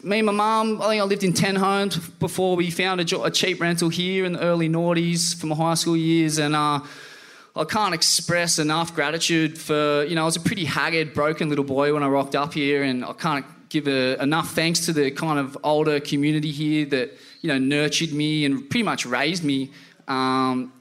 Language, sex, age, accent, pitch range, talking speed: English, male, 20-39, Australian, 145-180 Hz, 215 wpm